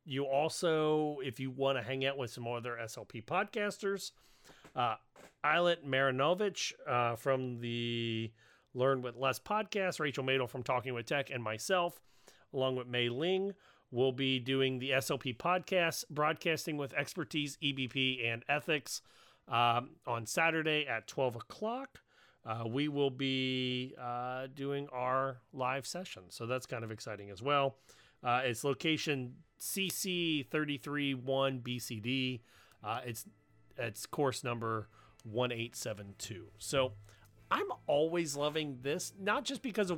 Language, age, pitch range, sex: English, 40-59, 120-160 Hz, male